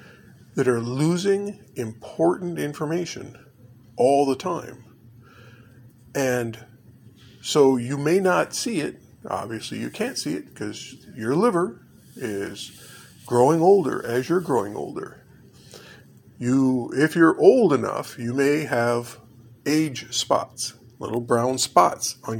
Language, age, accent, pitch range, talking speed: English, 50-69, American, 120-160 Hz, 120 wpm